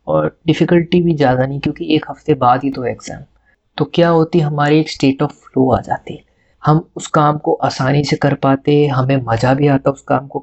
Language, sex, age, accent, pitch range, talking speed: Hindi, male, 30-49, native, 135-155 Hz, 215 wpm